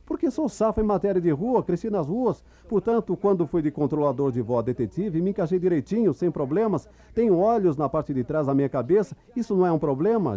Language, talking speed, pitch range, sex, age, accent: Portuguese, 215 wpm, 100-165 Hz, male, 40-59, Brazilian